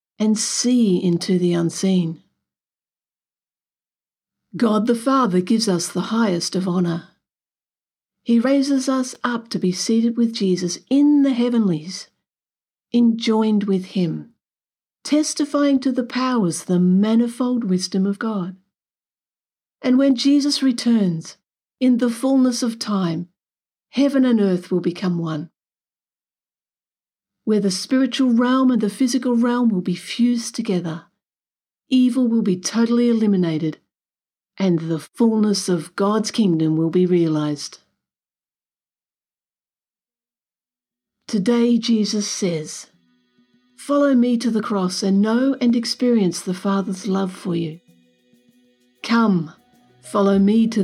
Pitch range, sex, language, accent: 180-240 Hz, female, English, British